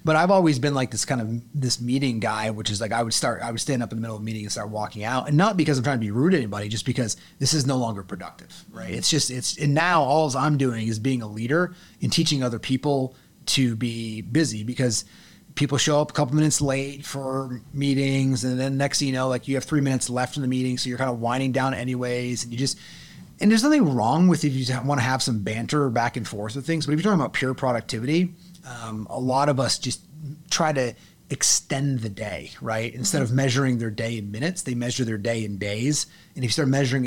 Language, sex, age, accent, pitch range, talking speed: English, male, 30-49, American, 115-150 Hz, 255 wpm